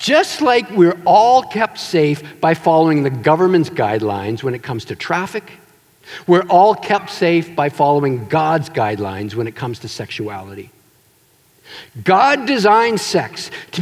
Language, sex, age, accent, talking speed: English, male, 50-69, American, 145 wpm